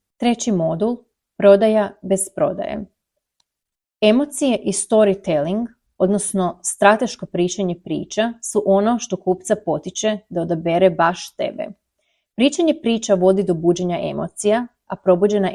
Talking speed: 110 wpm